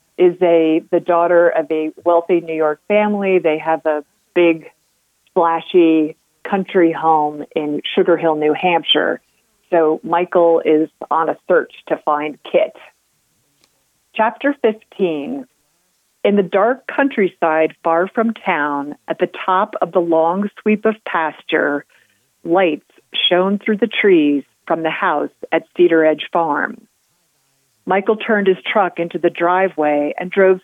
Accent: American